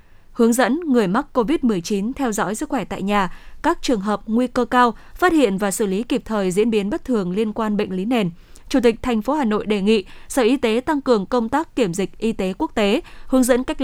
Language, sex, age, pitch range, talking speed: Vietnamese, female, 20-39, 205-255 Hz, 245 wpm